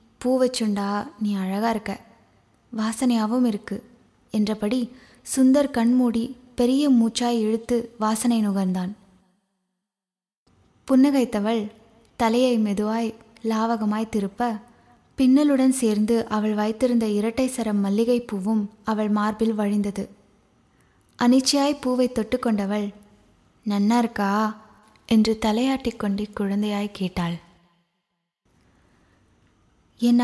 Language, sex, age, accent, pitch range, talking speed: Tamil, female, 20-39, native, 205-240 Hz, 75 wpm